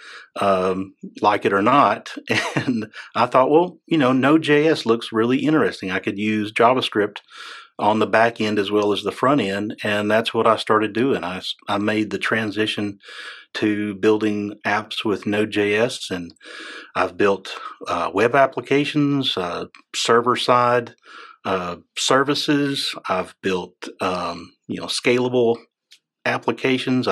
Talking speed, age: 140 wpm, 40-59